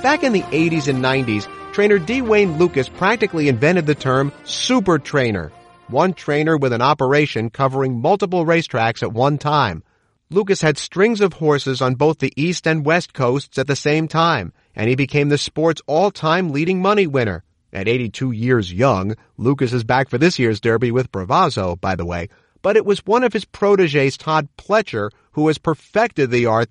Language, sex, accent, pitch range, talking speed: English, male, American, 125-175 Hz, 185 wpm